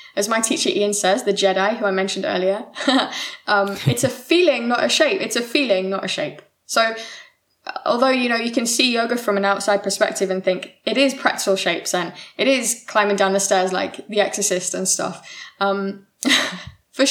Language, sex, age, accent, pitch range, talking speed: English, female, 20-39, British, 190-225 Hz, 195 wpm